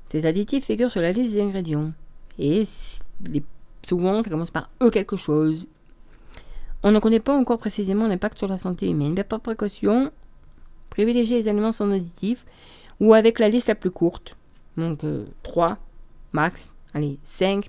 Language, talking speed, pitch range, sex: French, 165 wpm, 165-215 Hz, female